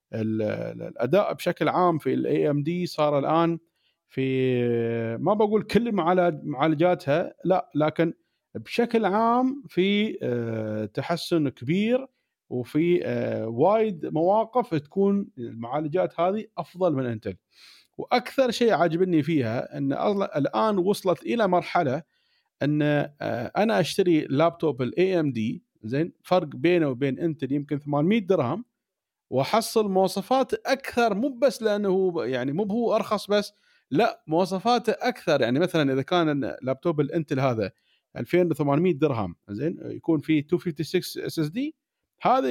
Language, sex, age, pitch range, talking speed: Arabic, male, 40-59, 145-215 Hz, 115 wpm